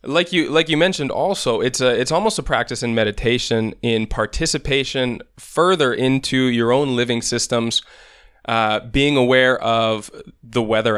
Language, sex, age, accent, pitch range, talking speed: English, male, 20-39, American, 110-135 Hz, 155 wpm